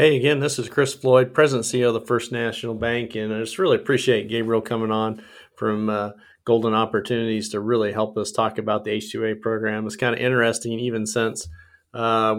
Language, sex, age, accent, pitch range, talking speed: English, male, 40-59, American, 105-125 Hz, 210 wpm